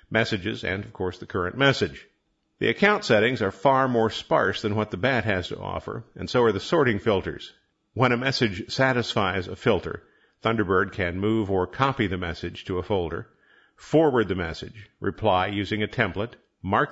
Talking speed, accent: 180 wpm, American